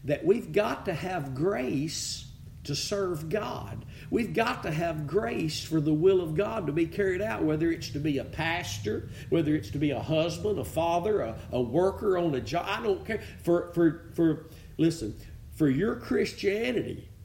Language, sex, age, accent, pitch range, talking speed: English, male, 50-69, American, 135-200 Hz, 185 wpm